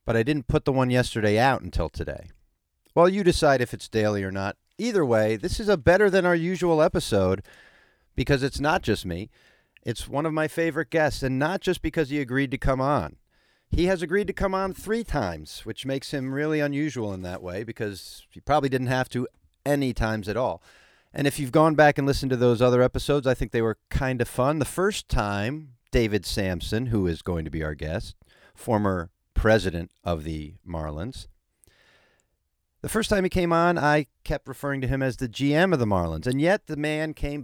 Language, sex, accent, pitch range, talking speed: English, male, American, 105-155 Hz, 210 wpm